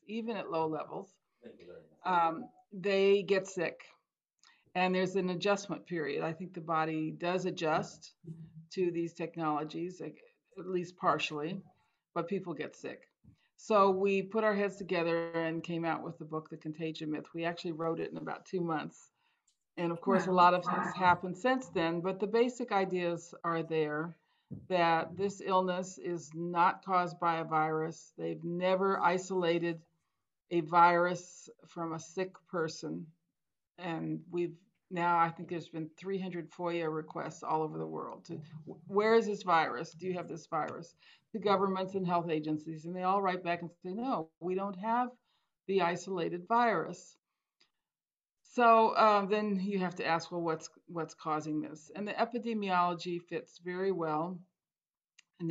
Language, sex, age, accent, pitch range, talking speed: English, female, 50-69, American, 165-190 Hz, 160 wpm